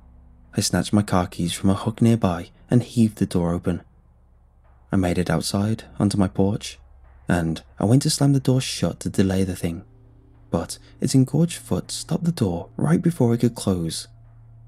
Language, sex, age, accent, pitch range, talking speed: English, male, 20-39, British, 85-115 Hz, 185 wpm